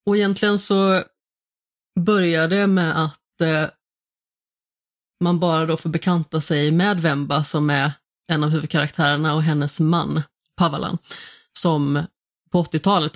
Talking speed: 125 wpm